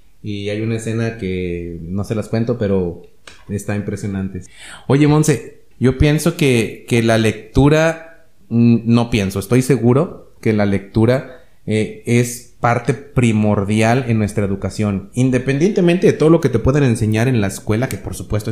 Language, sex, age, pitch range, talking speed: Spanish, male, 30-49, 110-135 Hz, 155 wpm